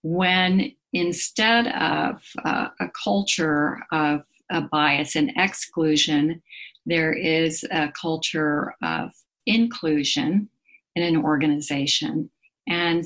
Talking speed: 95 wpm